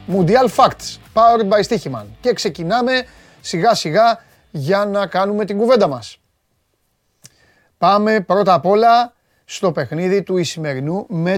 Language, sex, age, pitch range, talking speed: Greek, male, 30-49, 160-220 Hz, 125 wpm